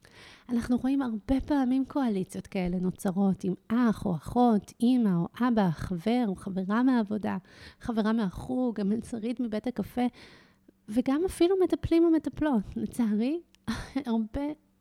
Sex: female